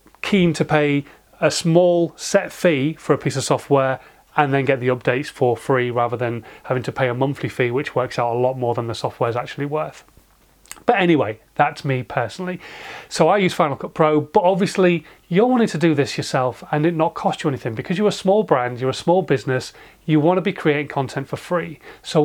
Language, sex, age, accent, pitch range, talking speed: English, male, 30-49, British, 140-175 Hz, 220 wpm